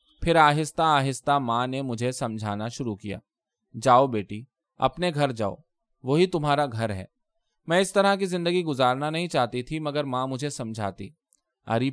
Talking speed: 160 wpm